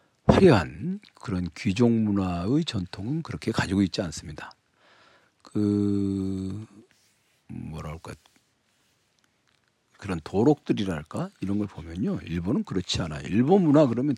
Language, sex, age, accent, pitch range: Korean, male, 50-69, native, 85-120 Hz